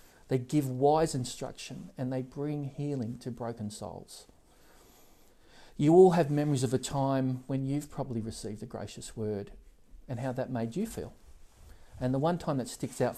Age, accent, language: 40-59, Australian, English